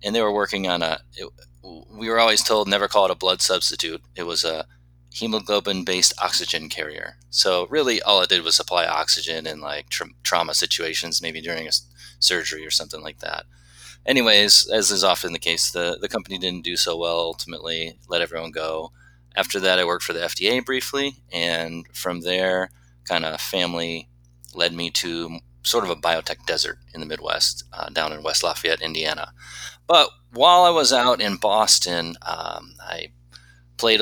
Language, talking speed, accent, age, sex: English, 180 wpm, American, 20-39, male